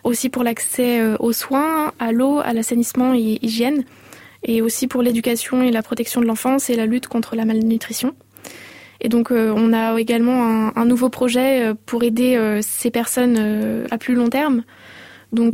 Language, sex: French, female